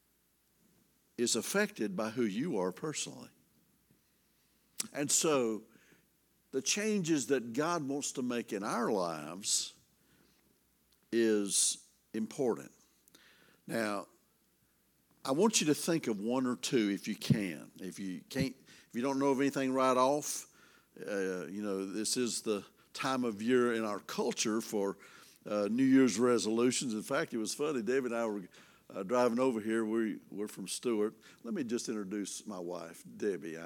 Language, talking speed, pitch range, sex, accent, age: English, 155 wpm, 105-135 Hz, male, American, 60-79